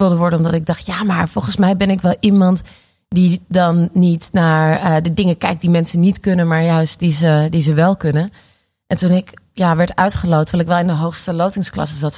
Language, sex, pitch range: Dutch, female, 165-195 Hz